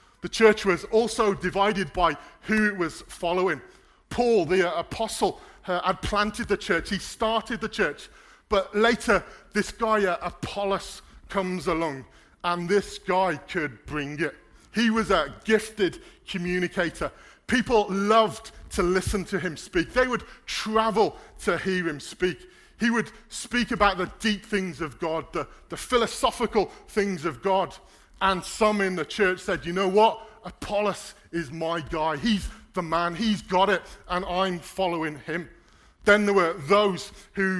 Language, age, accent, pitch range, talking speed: English, 40-59, British, 175-215 Hz, 160 wpm